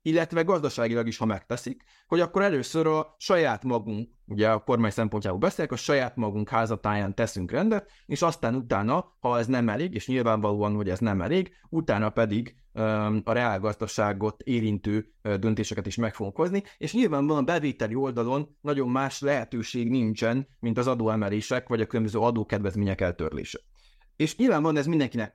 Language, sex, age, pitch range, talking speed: Hungarian, male, 20-39, 110-135 Hz, 155 wpm